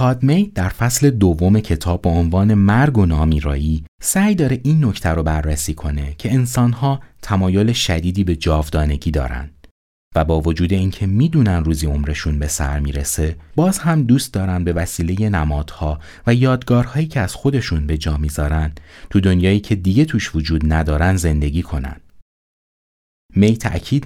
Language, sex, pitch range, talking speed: Persian, male, 80-115 Hz, 150 wpm